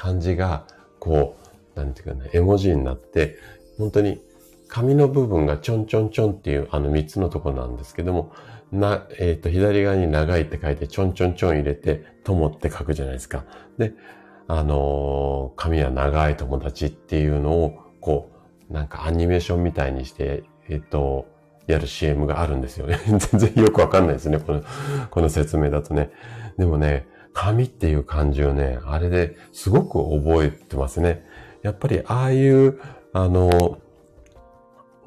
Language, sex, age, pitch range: Japanese, male, 40-59, 75-95 Hz